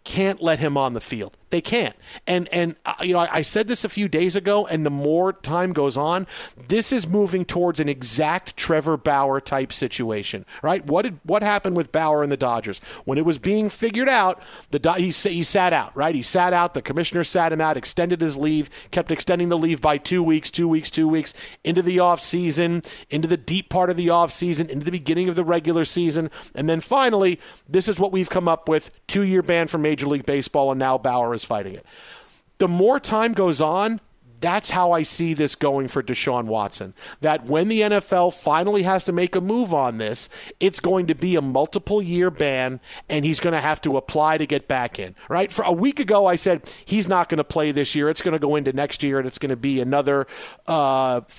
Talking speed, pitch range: 225 wpm, 145-180 Hz